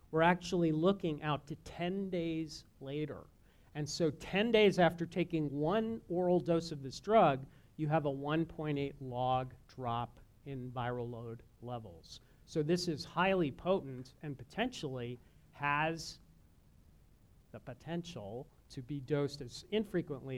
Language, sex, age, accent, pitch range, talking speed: English, male, 40-59, American, 135-175 Hz, 135 wpm